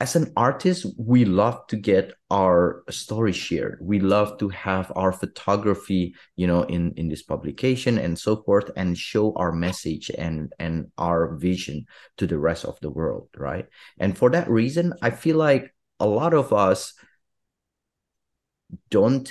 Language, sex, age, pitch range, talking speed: English, male, 30-49, 85-105 Hz, 160 wpm